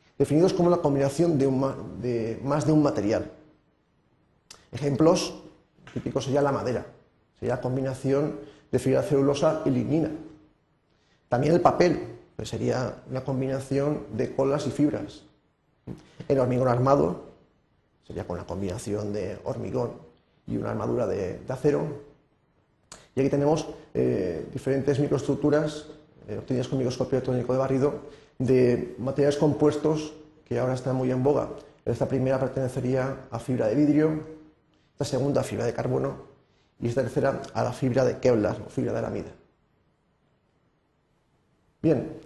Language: Spanish